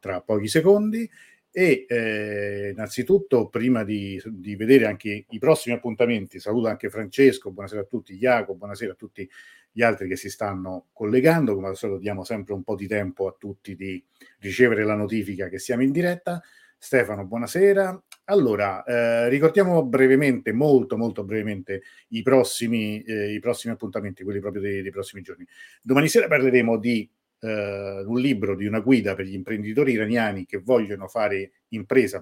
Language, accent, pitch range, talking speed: Italian, native, 100-130 Hz, 160 wpm